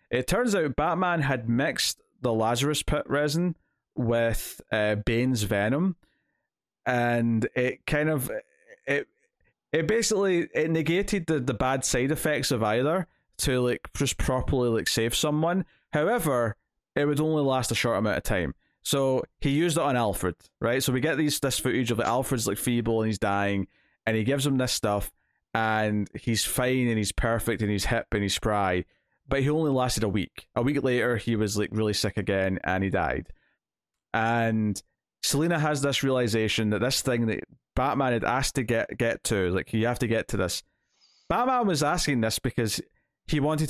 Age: 20-39